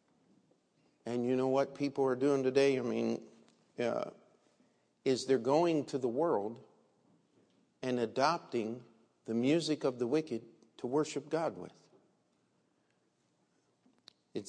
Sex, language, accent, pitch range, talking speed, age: male, English, American, 125-175 Hz, 120 wpm, 50-69